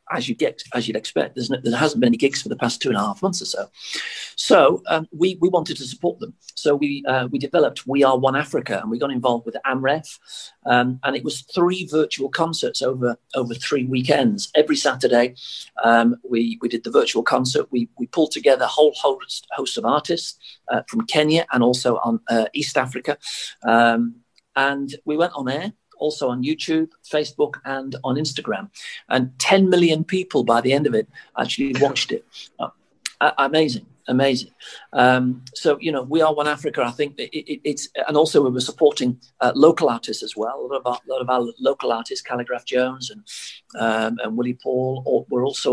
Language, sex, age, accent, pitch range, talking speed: English, male, 40-59, British, 125-160 Hz, 205 wpm